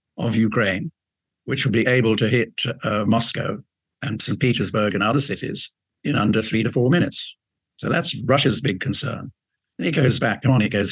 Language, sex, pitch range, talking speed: English, male, 110-130 Hz, 185 wpm